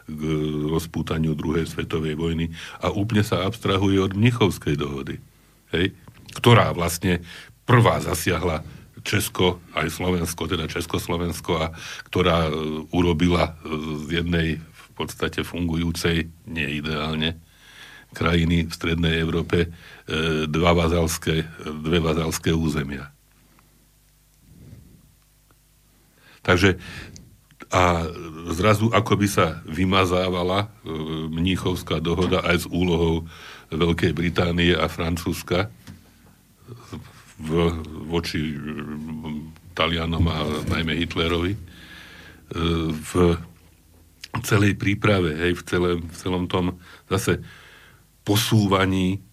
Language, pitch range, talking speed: Slovak, 80-90 Hz, 90 wpm